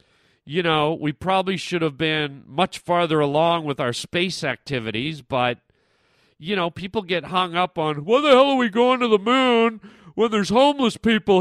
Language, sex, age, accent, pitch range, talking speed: English, male, 40-59, American, 155-205 Hz, 185 wpm